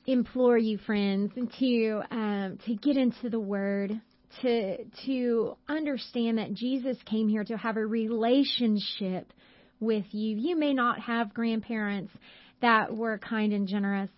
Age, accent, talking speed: 30-49, American, 135 wpm